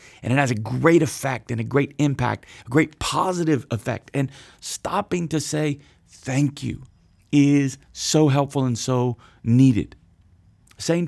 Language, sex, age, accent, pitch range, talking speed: English, male, 30-49, American, 115-145 Hz, 145 wpm